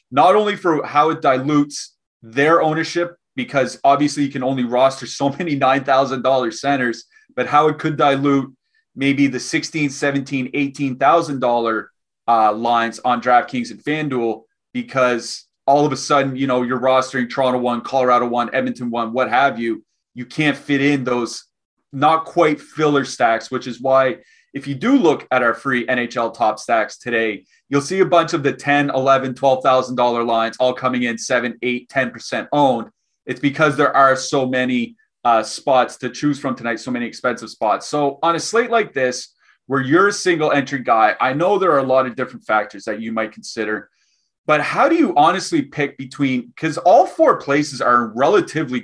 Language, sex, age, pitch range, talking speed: English, male, 30-49, 125-150 Hz, 185 wpm